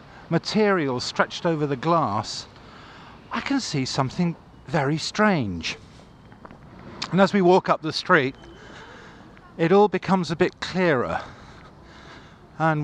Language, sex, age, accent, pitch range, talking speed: English, male, 50-69, British, 125-185 Hz, 115 wpm